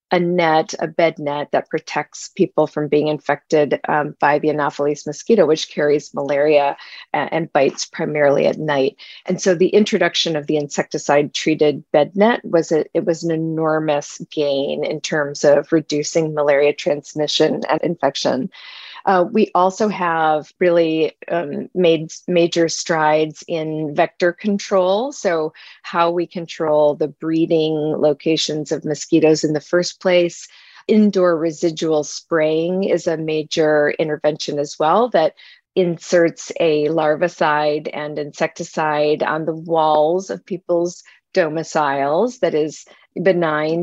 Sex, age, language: female, 40-59, English